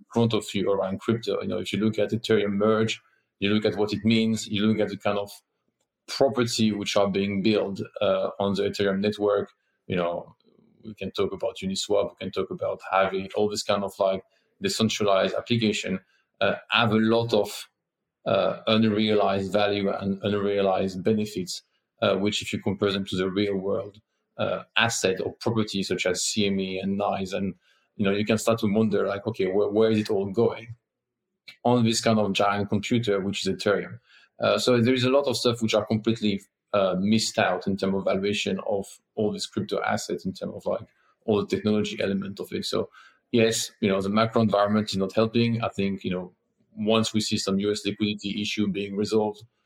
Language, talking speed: English, 200 wpm